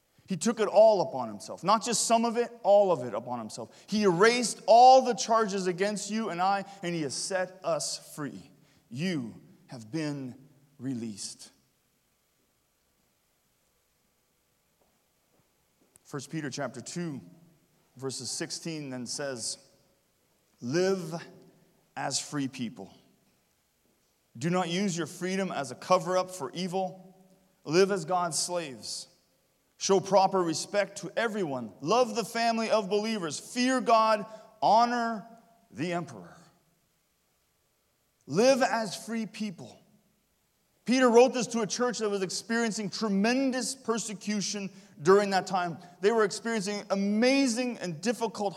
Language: English